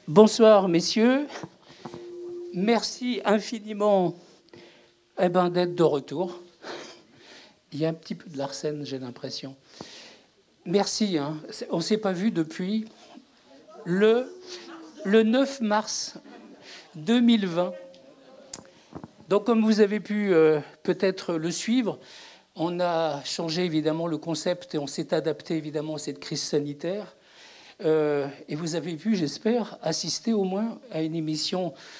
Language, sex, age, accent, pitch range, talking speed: French, male, 50-69, French, 160-210 Hz, 125 wpm